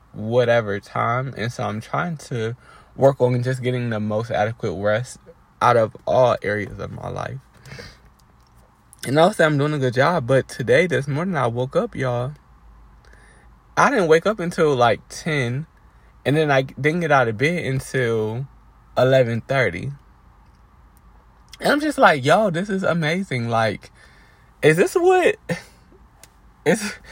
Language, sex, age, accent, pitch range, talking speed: English, male, 20-39, American, 110-155 Hz, 150 wpm